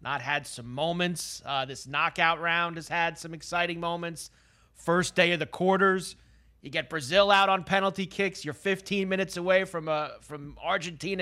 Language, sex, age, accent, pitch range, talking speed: English, male, 30-49, American, 150-200 Hz, 175 wpm